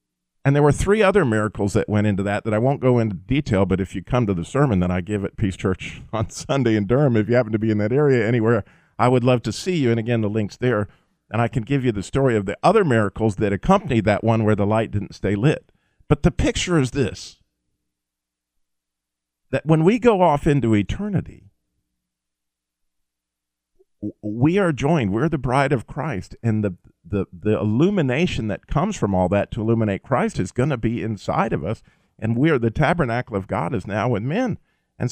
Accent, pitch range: American, 95-140 Hz